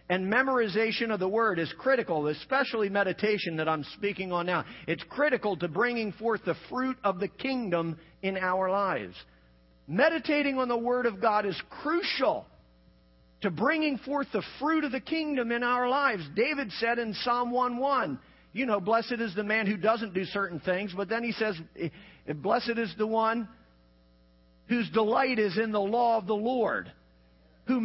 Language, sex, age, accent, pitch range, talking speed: English, male, 50-69, American, 200-275 Hz, 170 wpm